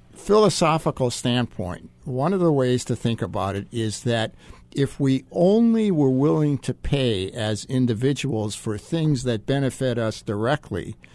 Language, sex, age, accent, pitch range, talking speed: English, male, 60-79, American, 110-155 Hz, 145 wpm